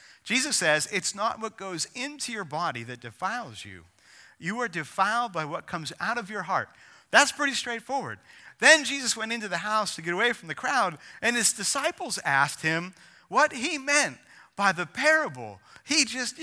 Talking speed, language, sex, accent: 185 wpm, English, male, American